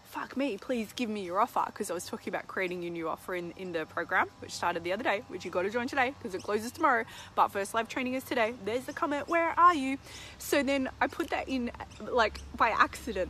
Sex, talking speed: female, 255 wpm